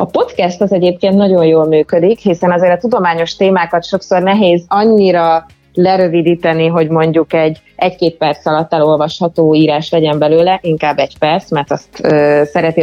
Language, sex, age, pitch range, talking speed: Hungarian, female, 20-39, 155-185 Hz, 145 wpm